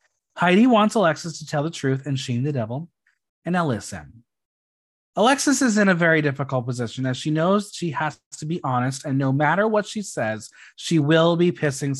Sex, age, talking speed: male, 30-49, 195 wpm